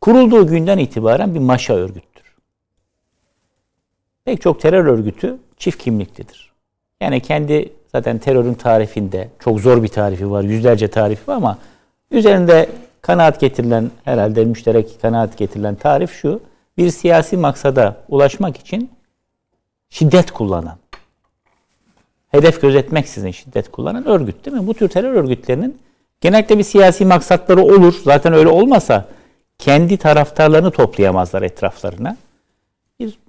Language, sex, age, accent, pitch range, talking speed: Turkish, male, 60-79, native, 120-185 Hz, 120 wpm